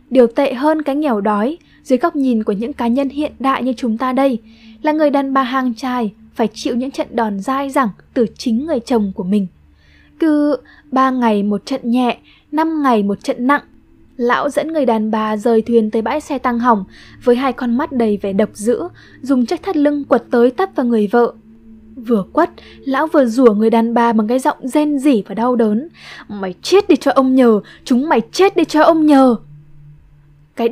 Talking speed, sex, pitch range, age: 215 wpm, female, 225-280 Hz, 10-29